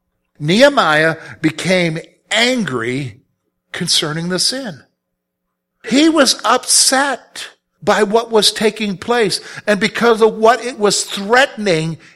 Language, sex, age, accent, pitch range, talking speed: English, male, 50-69, American, 125-210 Hz, 105 wpm